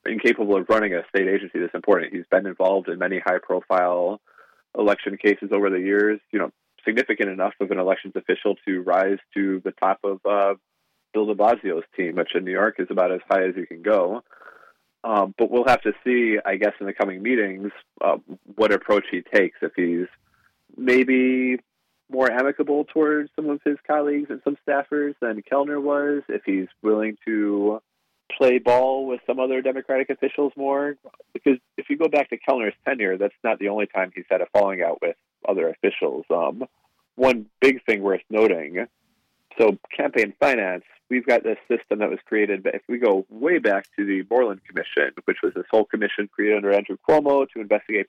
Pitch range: 100-140 Hz